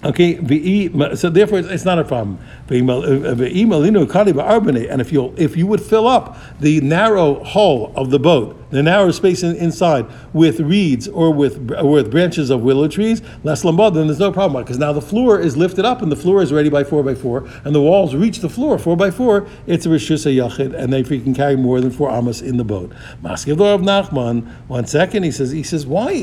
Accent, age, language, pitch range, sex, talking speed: American, 60-79, English, 135-190 Hz, male, 215 wpm